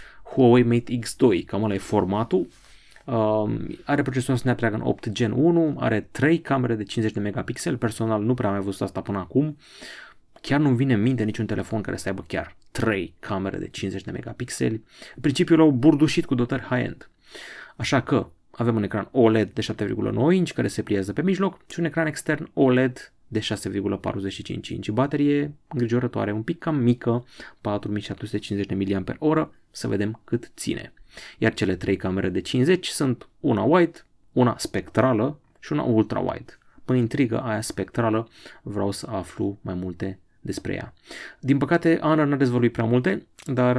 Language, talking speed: Romanian, 165 wpm